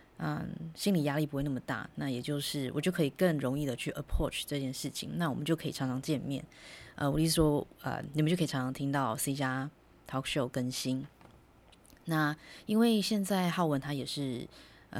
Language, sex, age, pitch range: Chinese, female, 20-39, 135-165 Hz